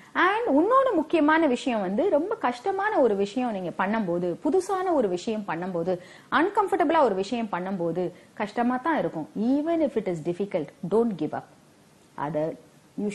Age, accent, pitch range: 30-49, Indian, 200-310 Hz